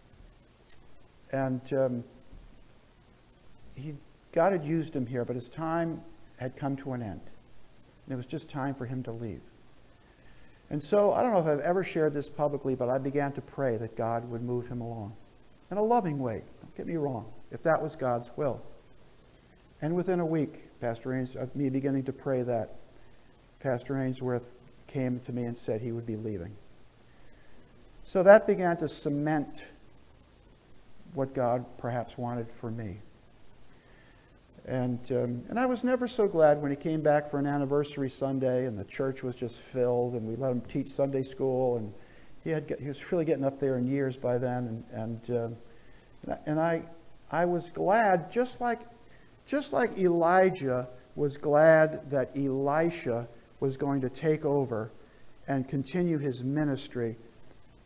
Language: English